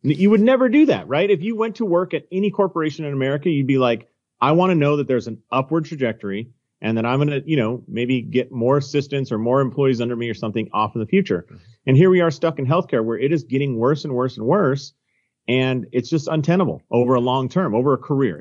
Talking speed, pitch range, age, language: 250 wpm, 115-150 Hz, 40-59, English